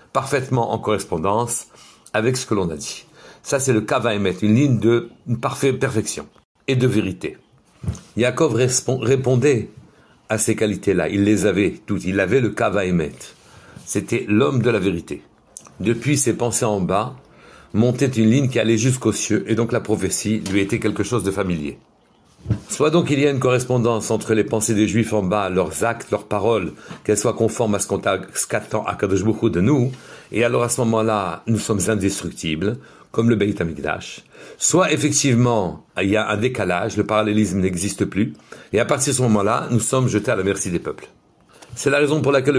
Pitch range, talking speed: 100-125 Hz, 190 wpm